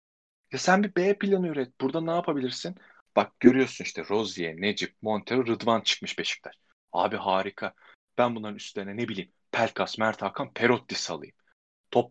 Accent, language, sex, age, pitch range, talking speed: native, Turkish, male, 30-49, 105-135 Hz, 155 wpm